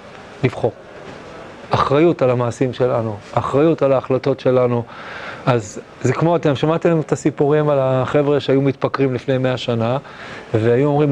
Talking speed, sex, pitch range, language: 135 wpm, male, 130-170 Hz, Hebrew